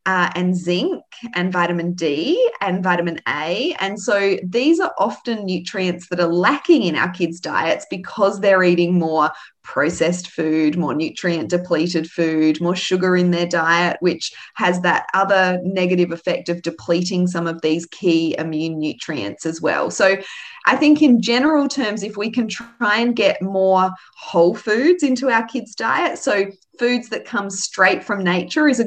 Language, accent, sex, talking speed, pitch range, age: English, Australian, female, 170 wpm, 175-210 Hz, 20-39